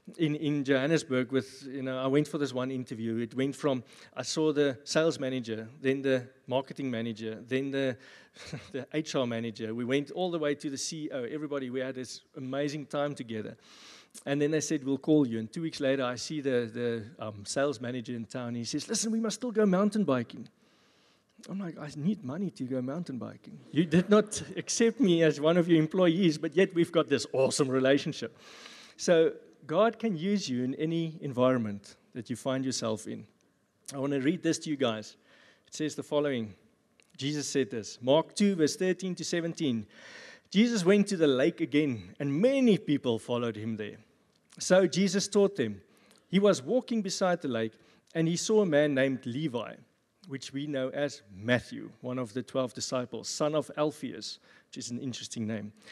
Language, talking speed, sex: English, 195 wpm, male